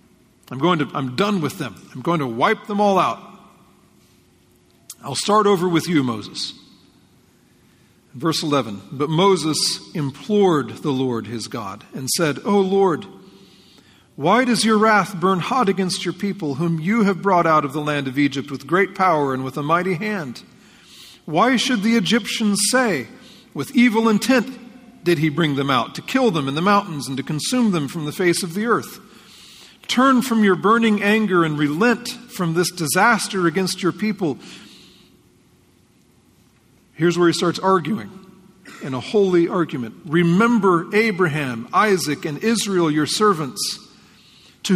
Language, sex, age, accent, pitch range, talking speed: English, male, 40-59, American, 150-210 Hz, 160 wpm